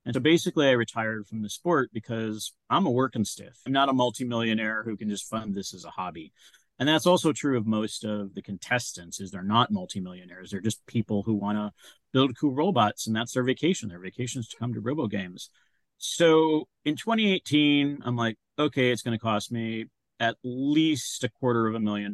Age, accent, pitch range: 40-59, American, 105-140 Hz